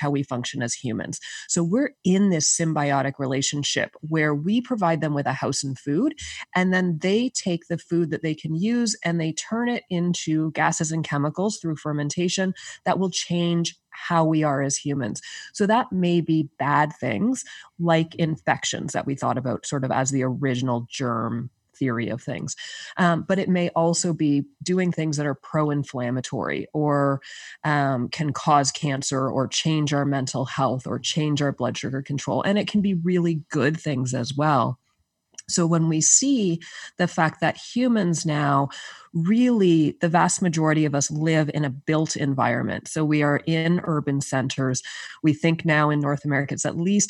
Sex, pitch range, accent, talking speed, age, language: female, 140-175 Hz, American, 180 wpm, 20-39, English